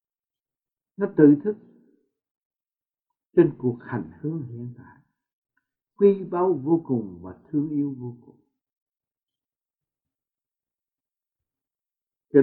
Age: 60-79